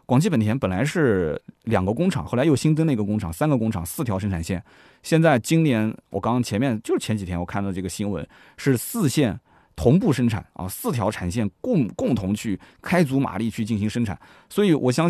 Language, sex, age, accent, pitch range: Chinese, male, 20-39, native, 100-135 Hz